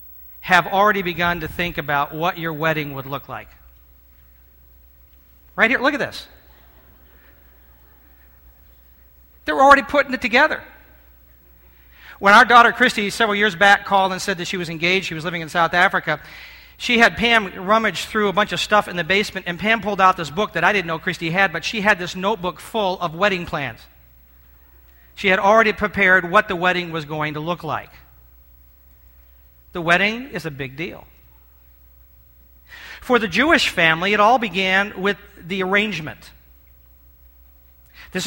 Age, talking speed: 40-59, 165 wpm